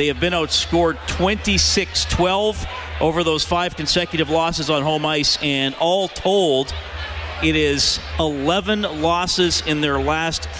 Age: 40-59